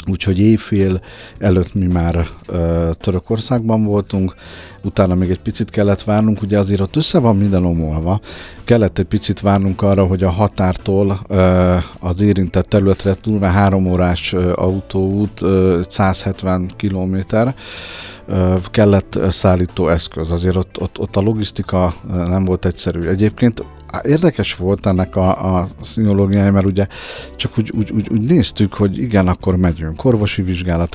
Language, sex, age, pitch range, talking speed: Hungarian, male, 50-69, 90-105 Hz, 140 wpm